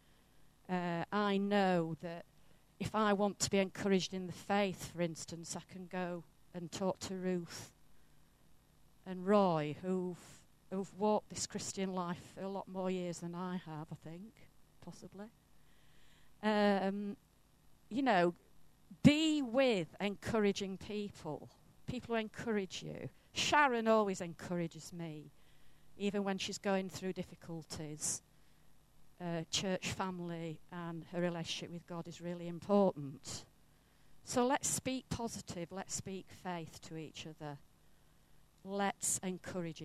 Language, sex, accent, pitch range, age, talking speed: English, female, British, 165-200 Hz, 40-59, 125 wpm